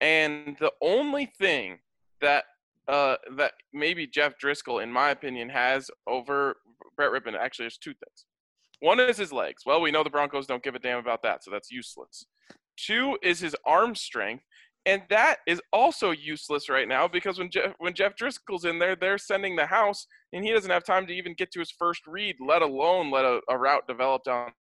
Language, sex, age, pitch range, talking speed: English, male, 20-39, 130-185 Hz, 200 wpm